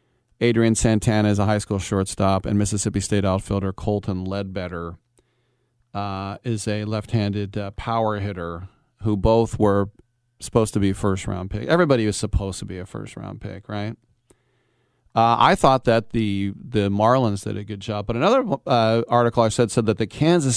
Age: 40-59